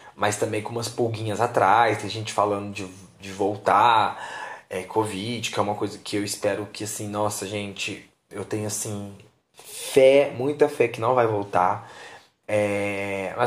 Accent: Brazilian